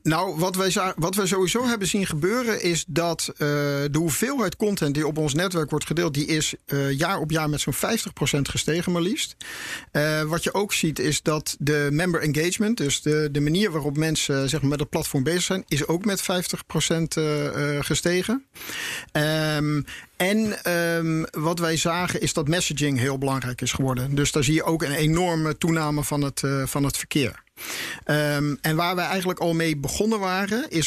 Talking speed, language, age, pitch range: 180 wpm, Dutch, 50-69, 145-180 Hz